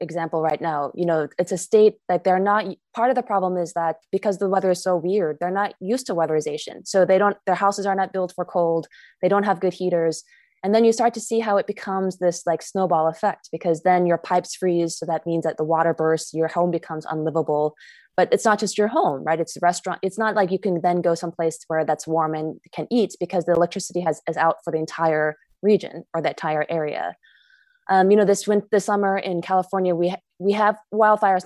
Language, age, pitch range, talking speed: English, 20-39, 165-205 Hz, 235 wpm